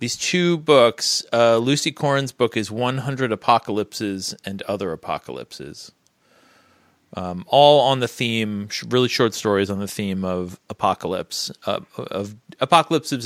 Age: 30-49